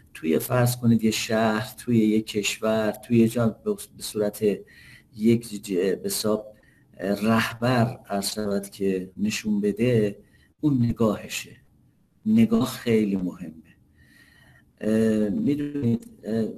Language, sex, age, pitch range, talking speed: Persian, male, 50-69, 100-120 Hz, 90 wpm